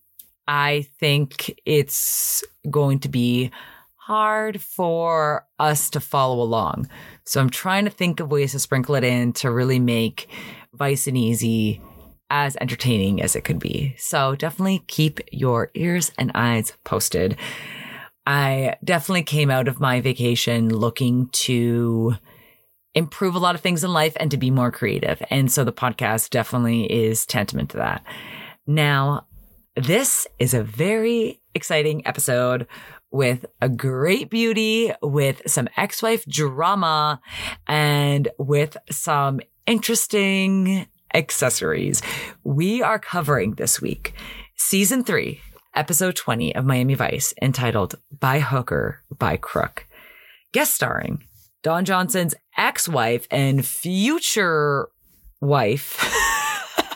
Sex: female